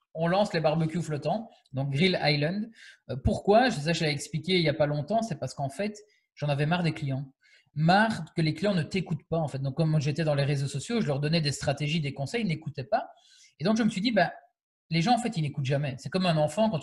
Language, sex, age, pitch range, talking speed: French, male, 20-39, 145-185 Hz, 260 wpm